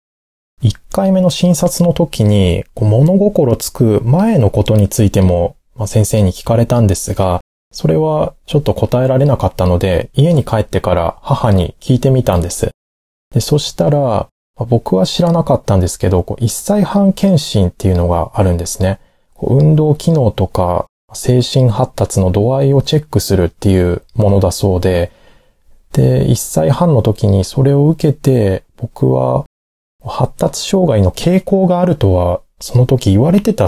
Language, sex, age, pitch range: Japanese, male, 20-39, 95-140 Hz